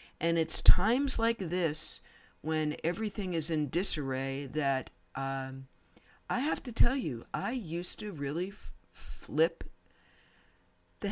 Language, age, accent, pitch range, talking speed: English, 50-69, American, 140-180 Hz, 125 wpm